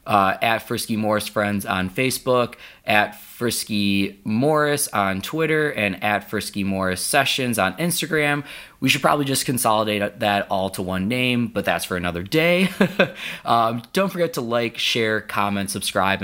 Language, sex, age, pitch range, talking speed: English, male, 20-39, 100-125 Hz, 155 wpm